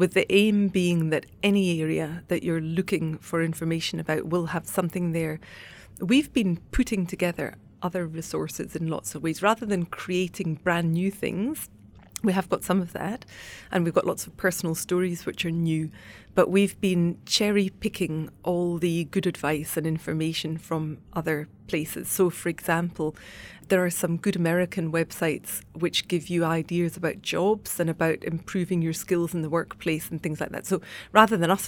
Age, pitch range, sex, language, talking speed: 30-49, 160-185 Hz, female, English, 175 wpm